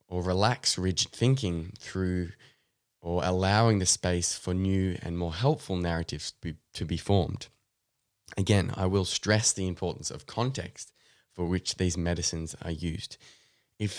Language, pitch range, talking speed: English, 90-110 Hz, 145 wpm